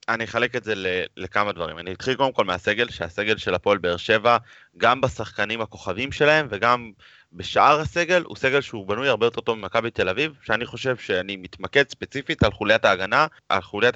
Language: Hebrew